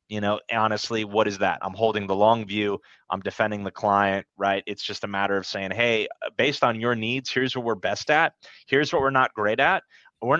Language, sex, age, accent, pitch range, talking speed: English, male, 30-49, American, 95-110 Hz, 230 wpm